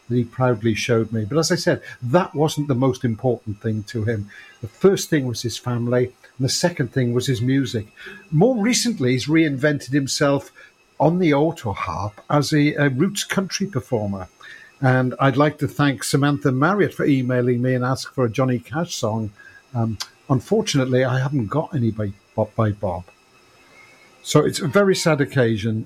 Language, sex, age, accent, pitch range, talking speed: English, male, 50-69, British, 115-145 Hz, 180 wpm